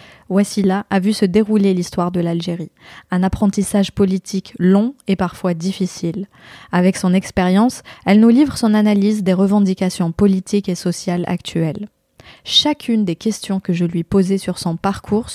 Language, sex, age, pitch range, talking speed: French, female, 20-39, 185-220 Hz, 155 wpm